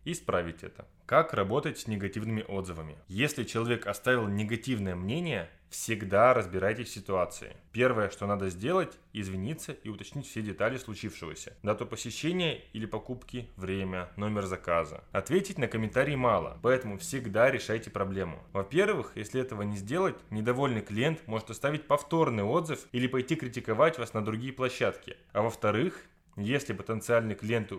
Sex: male